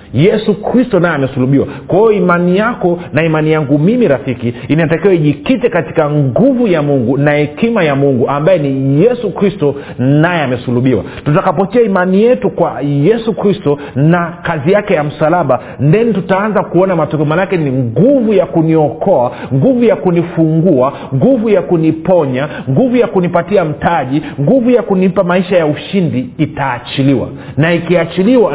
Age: 40-59